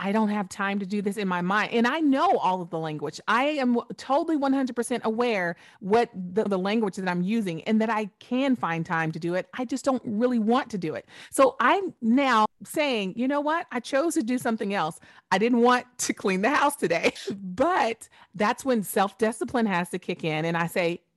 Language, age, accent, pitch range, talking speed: English, 30-49, American, 180-240 Hz, 220 wpm